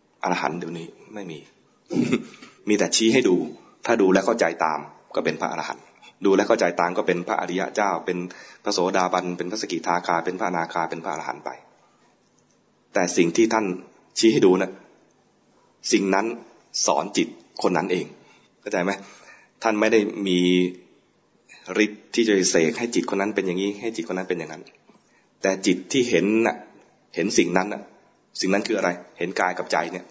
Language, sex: English, male